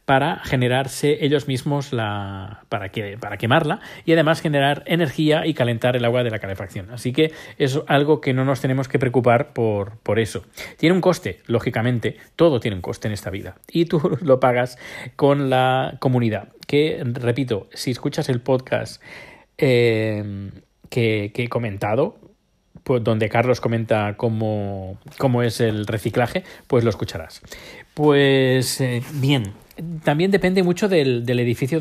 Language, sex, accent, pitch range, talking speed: Spanish, male, Spanish, 110-140 Hz, 155 wpm